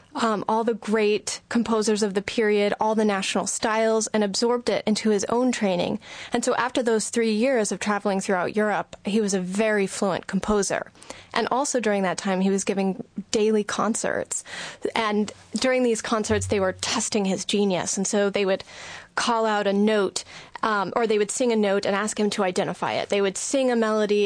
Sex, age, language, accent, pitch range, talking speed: female, 30-49, English, American, 195-220 Hz, 200 wpm